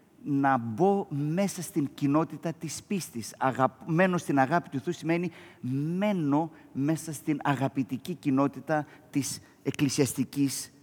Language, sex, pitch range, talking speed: Greek, male, 135-165 Hz, 115 wpm